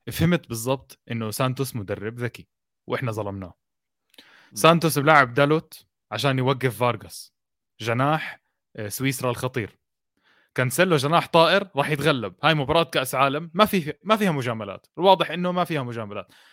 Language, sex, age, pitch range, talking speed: Arabic, male, 20-39, 130-175 Hz, 130 wpm